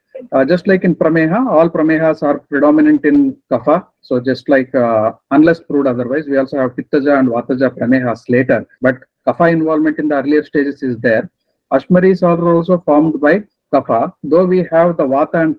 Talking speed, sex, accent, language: 180 wpm, male, Indian, English